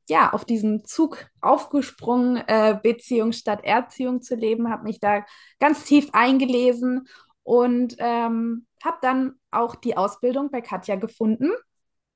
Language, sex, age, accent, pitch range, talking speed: German, female, 20-39, German, 205-245 Hz, 130 wpm